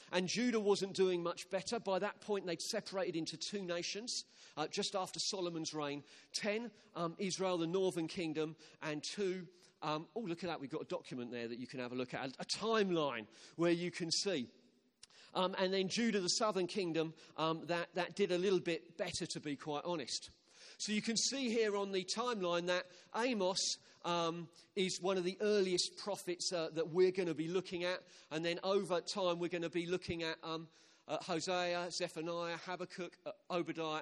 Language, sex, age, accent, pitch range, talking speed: English, male, 40-59, British, 160-190 Hz, 200 wpm